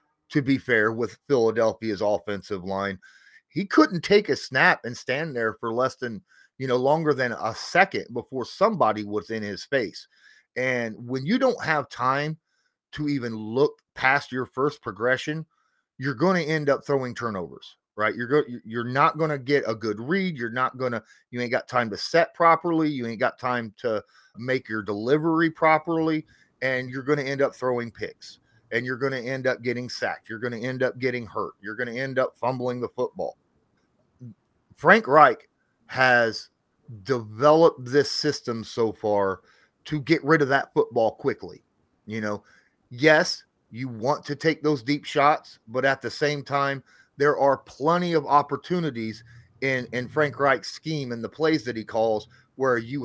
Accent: American